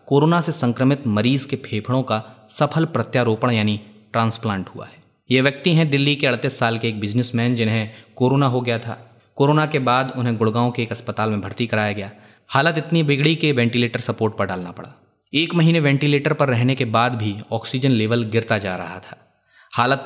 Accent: native